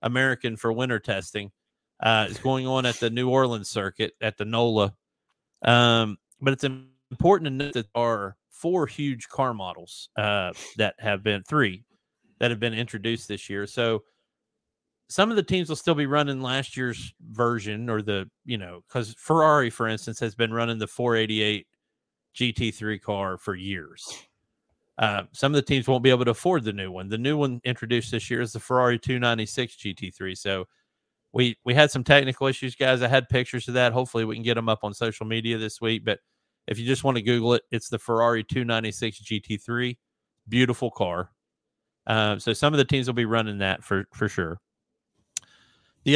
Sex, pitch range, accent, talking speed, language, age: male, 110-130 Hz, American, 190 wpm, English, 40-59